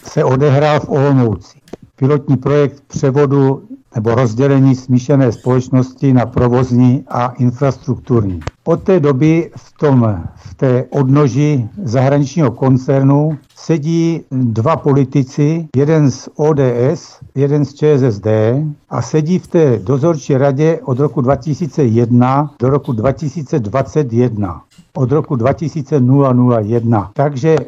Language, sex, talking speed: Czech, male, 110 wpm